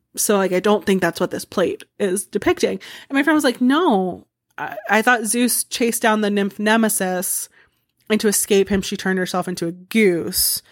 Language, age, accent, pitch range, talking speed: English, 20-39, American, 185-240 Hz, 200 wpm